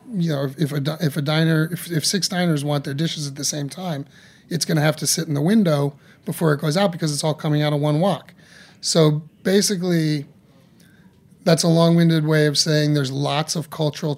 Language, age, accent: English, 30-49, American